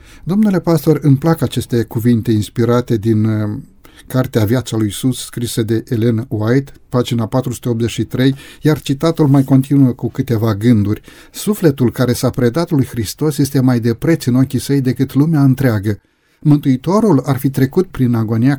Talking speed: 155 wpm